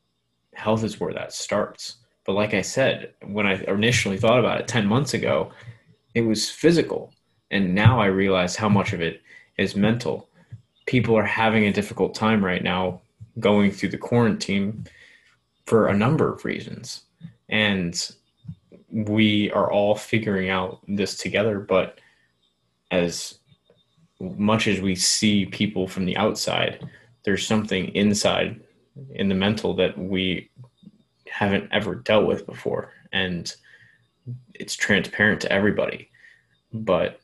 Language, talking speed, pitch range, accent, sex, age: English, 135 wpm, 90-110 Hz, American, male, 20-39